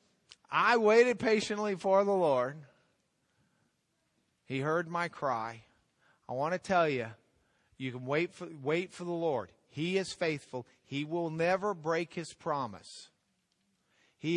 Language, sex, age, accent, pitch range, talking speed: English, male, 50-69, American, 145-210 Hz, 140 wpm